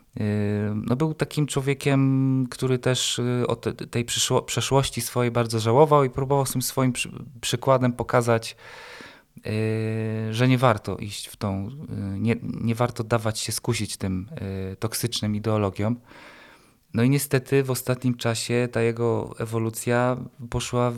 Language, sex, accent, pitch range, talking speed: Polish, male, native, 110-120 Hz, 135 wpm